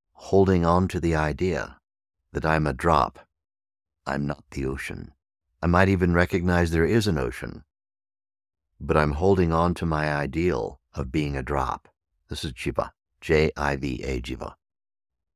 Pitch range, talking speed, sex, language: 75-85 Hz, 145 wpm, male, English